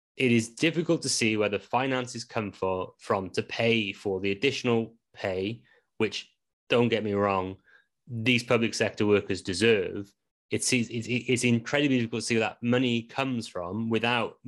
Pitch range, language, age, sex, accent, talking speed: 100-135 Hz, English, 30-49, male, British, 160 wpm